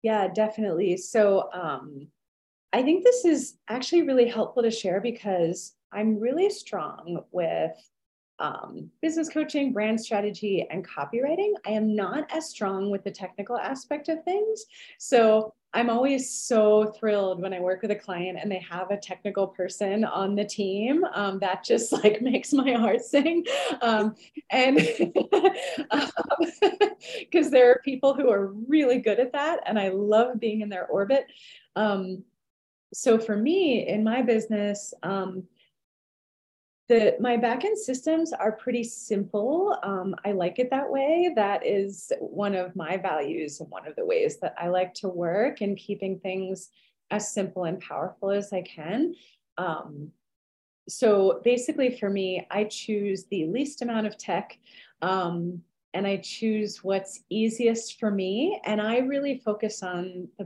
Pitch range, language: 190-255 Hz, English